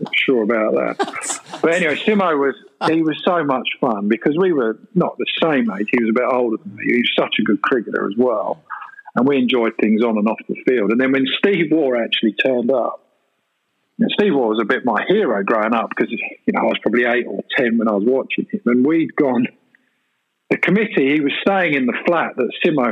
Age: 50-69